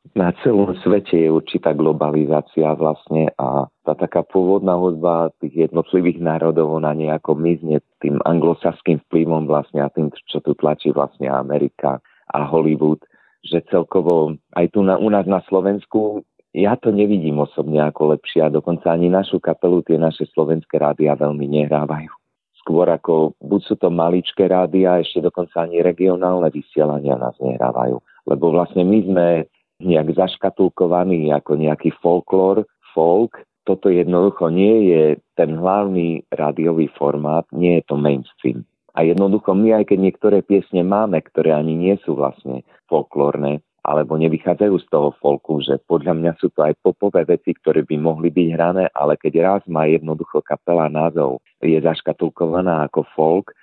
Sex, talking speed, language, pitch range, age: male, 150 wpm, Slovak, 75-90 Hz, 40-59